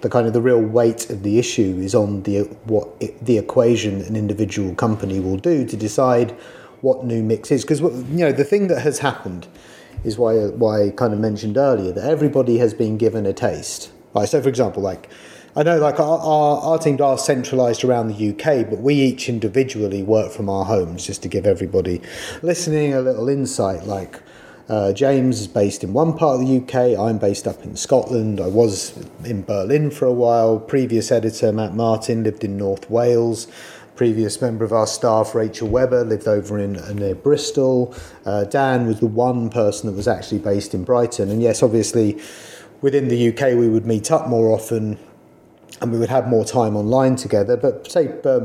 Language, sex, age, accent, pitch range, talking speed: English, male, 30-49, British, 105-130 Hz, 200 wpm